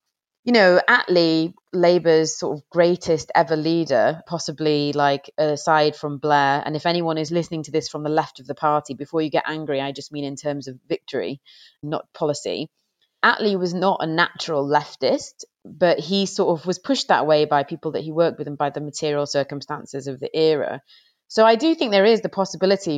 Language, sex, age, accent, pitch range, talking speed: English, female, 30-49, British, 145-175 Hz, 200 wpm